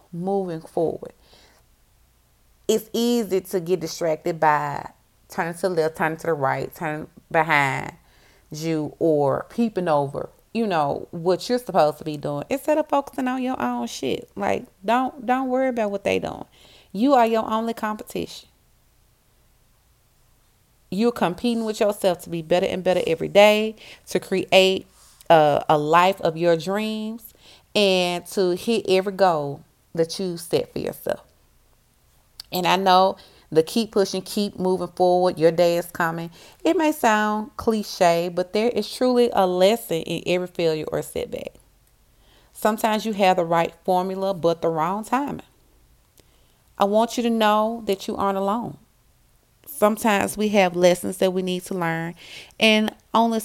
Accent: American